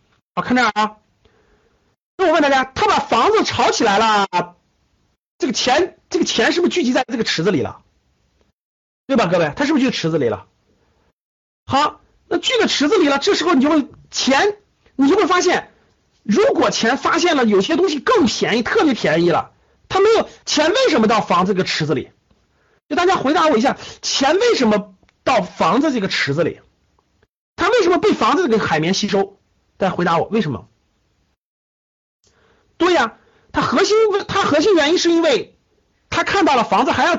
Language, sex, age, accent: Chinese, male, 50-69, native